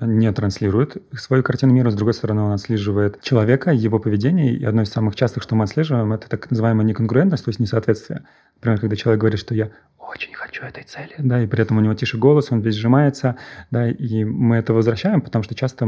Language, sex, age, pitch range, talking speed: Russian, male, 30-49, 110-125 Hz, 215 wpm